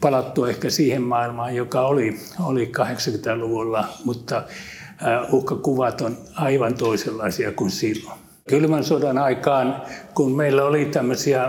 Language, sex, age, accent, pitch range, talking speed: Finnish, male, 60-79, native, 125-150 Hz, 115 wpm